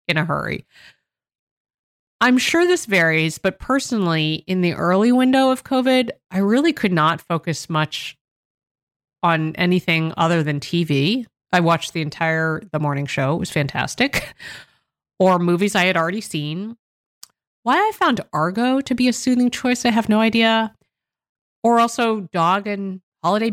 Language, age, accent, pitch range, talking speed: English, 30-49, American, 160-220 Hz, 155 wpm